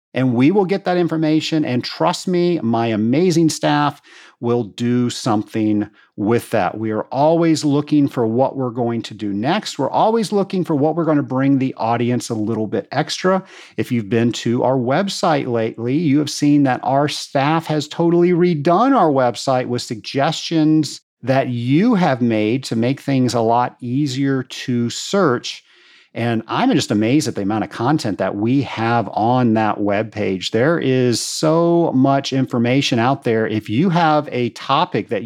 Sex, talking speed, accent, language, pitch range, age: male, 175 wpm, American, English, 120-160 Hz, 50-69